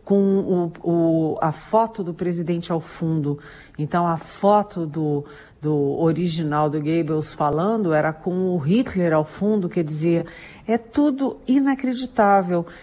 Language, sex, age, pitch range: Portuguese, female, 50-69, 155-190 Hz